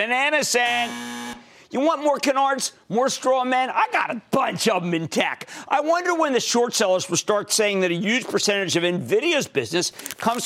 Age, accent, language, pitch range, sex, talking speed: 50-69, American, English, 165-250 Hz, male, 200 wpm